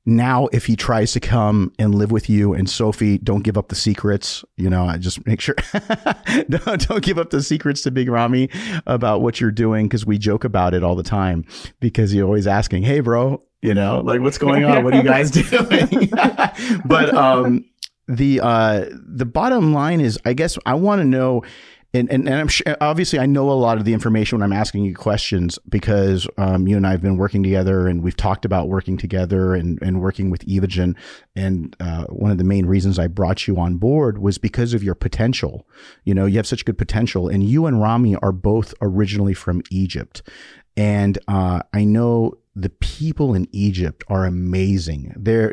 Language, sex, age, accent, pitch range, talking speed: English, male, 40-59, American, 95-125 Hz, 205 wpm